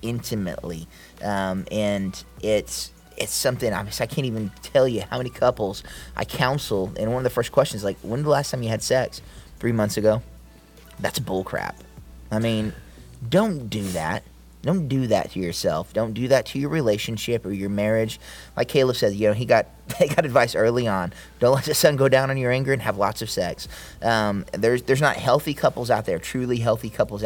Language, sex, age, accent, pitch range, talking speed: English, male, 20-39, American, 95-125 Hz, 205 wpm